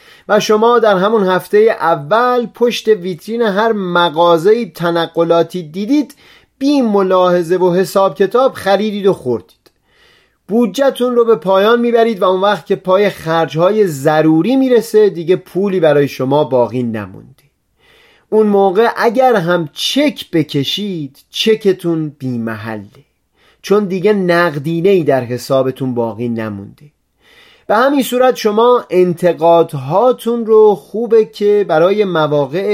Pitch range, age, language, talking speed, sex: 155-220 Hz, 30-49, Persian, 120 wpm, male